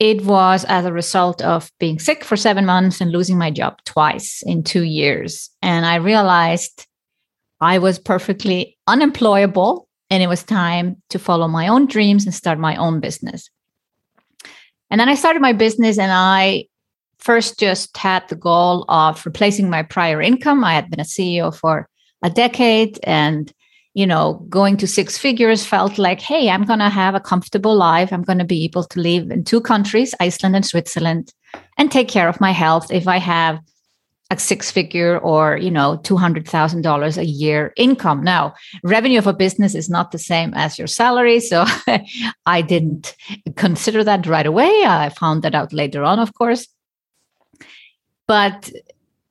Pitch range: 165-215 Hz